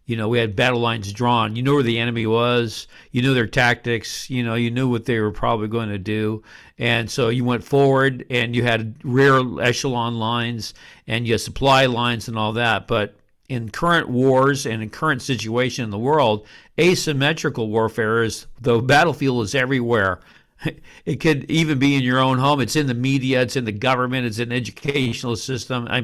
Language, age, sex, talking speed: English, 50-69, male, 200 wpm